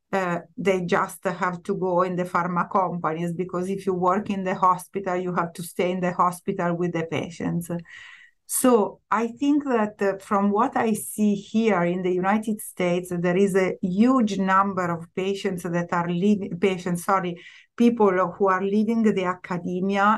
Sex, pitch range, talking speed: female, 180-210 Hz, 170 wpm